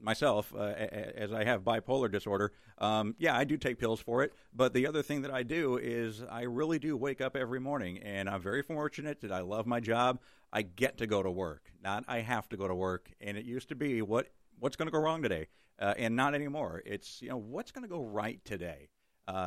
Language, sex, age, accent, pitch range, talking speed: English, male, 50-69, American, 100-125 Hz, 240 wpm